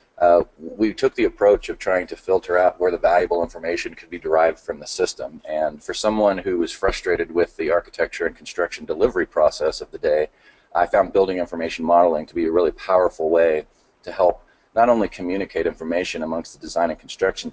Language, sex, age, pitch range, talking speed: English, male, 40-59, 335-465 Hz, 200 wpm